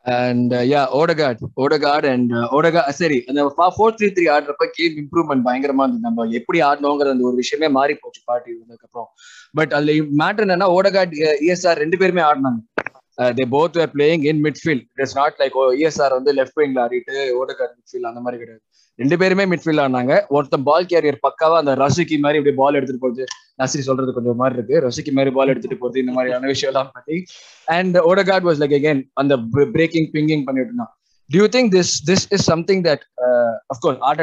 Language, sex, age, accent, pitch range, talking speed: Tamil, male, 20-39, native, 130-170 Hz, 140 wpm